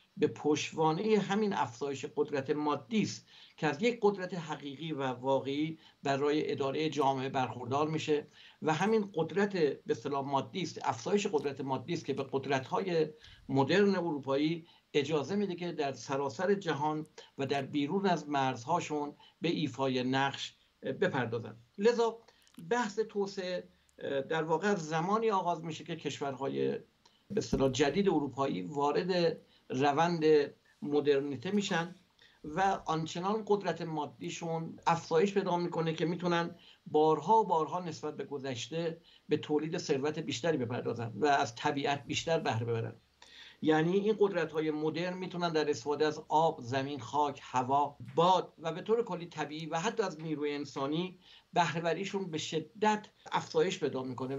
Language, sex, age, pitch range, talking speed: Persian, male, 60-79, 140-175 Hz, 130 wpm